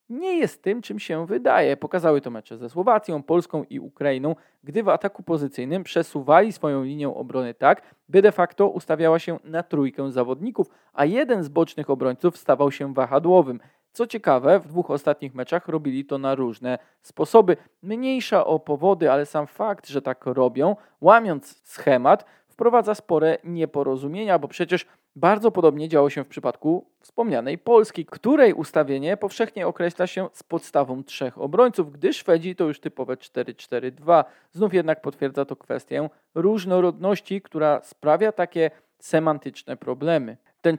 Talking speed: 150 wpm